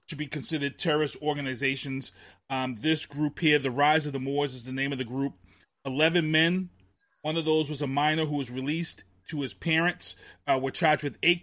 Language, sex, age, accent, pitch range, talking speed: English, male, 30-49, American, 135-160 Hz, 205 wpm